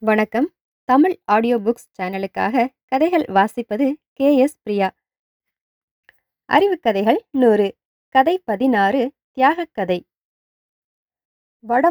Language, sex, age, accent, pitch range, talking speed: English, female, 20-39, Indian, 235-305 Hz, 80 wpm